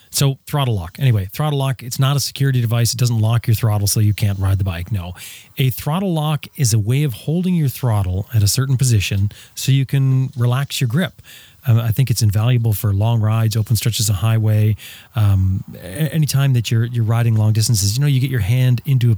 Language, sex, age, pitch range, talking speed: English, male, 30-49, 105-130 Hz, 220 wpm